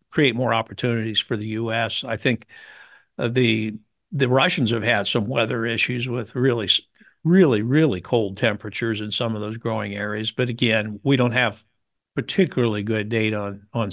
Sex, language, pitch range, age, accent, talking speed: male, English, 110-130 Hz, 60-79, American, 170 wpm